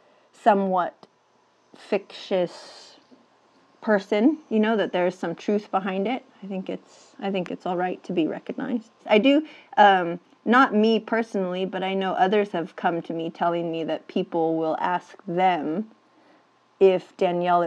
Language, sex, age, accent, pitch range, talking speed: English, female, 30-49, American, 170-195 Hz, 155 wpm